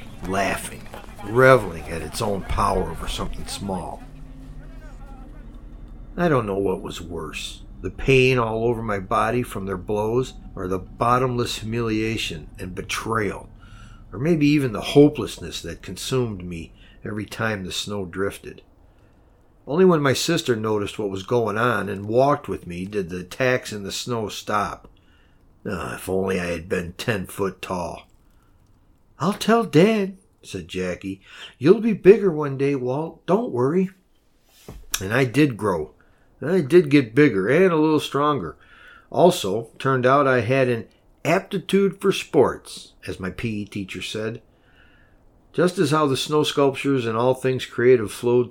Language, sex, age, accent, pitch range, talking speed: English, male, 60-79, American, 95-140 Hz, 150 wpm